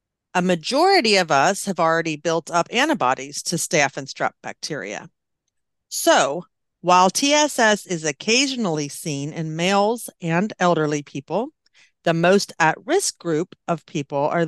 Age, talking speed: 40-59, 135 wpm